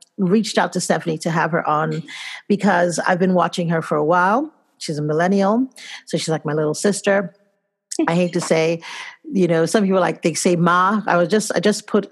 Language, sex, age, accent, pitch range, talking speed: English, female, 40-59, American, 165-225 Hz, 215 wpm